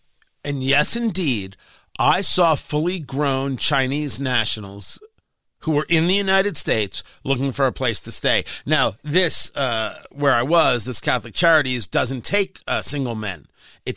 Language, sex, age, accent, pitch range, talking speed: English, male, 40-59, American, 140-235 Hz, 155 wpm